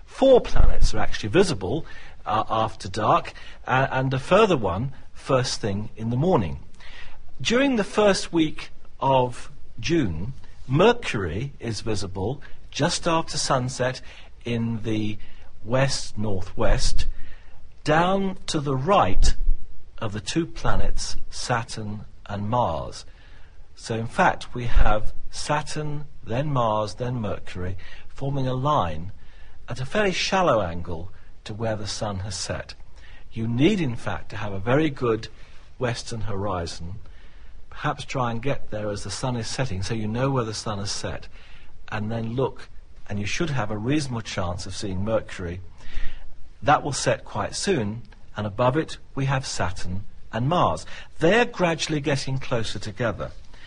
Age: 50-69